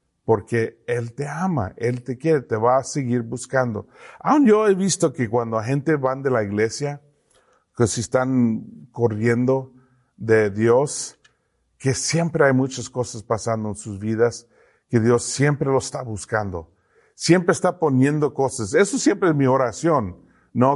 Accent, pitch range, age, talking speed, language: Mexican, 120-160 Hz, 50-69, 155 wpm, English